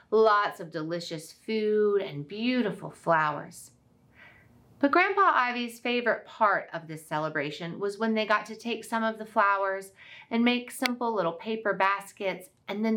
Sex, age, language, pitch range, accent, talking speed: female, 30-49, English, 160-220 Hz, American, 155 wpm